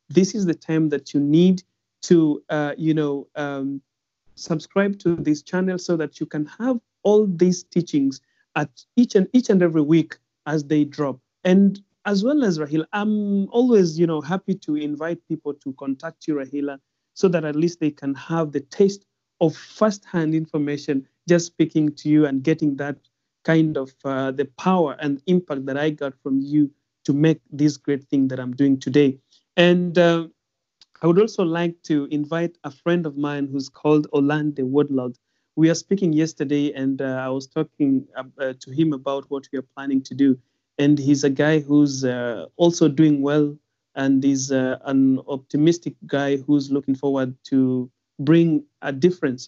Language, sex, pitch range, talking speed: English, male, 140-165 Hz, 180 wpm